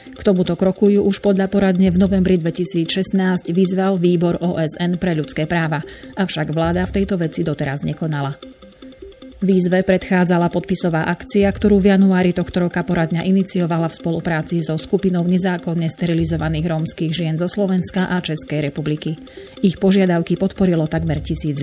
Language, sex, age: Slovak, female, 30-49